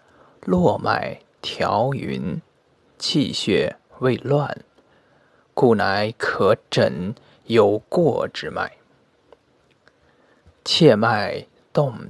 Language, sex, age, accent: Chinese, male, 20-39, native